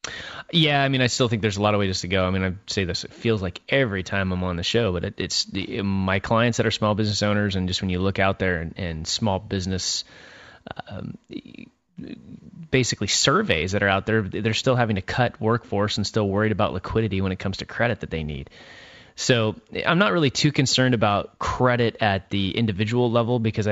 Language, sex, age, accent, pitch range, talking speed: English, male, 20-39, American, 95-120 Hz, 220 wpm